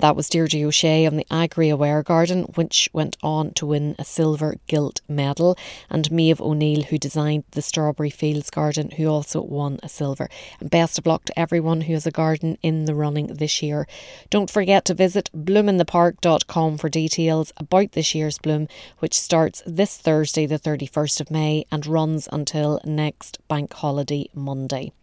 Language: English